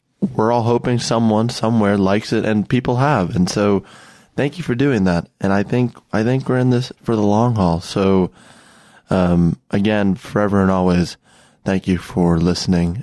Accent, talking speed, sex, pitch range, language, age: American, 180 wpm, male, 100-130 Hz, English, 20-39